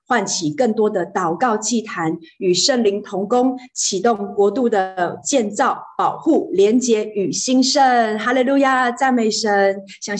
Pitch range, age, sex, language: 180-245 Hz, 30-49, female, Chinese